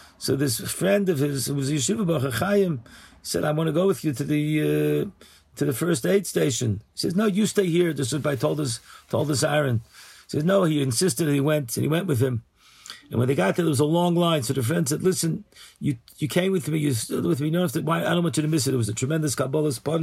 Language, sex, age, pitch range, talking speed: English, male, 50-69, 125-160 Hz, 275 wpm